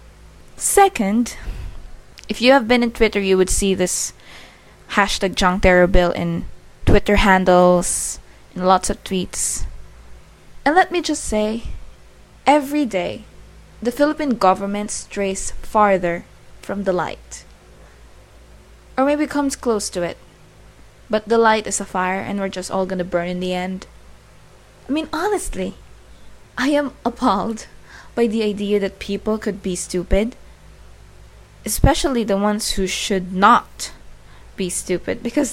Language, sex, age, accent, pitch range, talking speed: English, female, 20-39, Filipino, 190-240 Hz, 135 wpm